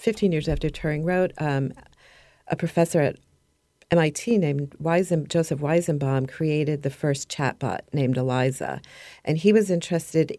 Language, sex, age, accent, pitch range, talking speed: English, female, 40-59, American, 145-170 Hz, 140 wpm